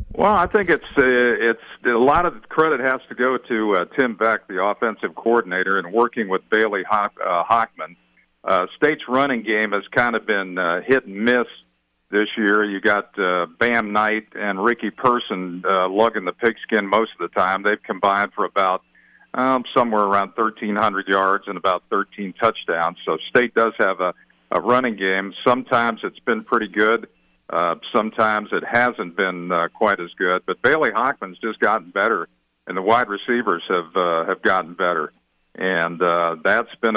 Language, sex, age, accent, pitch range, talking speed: English, male, 50-69, American, 90-120 Hz, 180 wpm